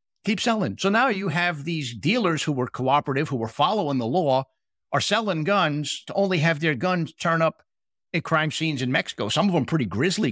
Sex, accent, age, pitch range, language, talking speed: male, American, 50-69, 130-175 Hz, English, 210 wpm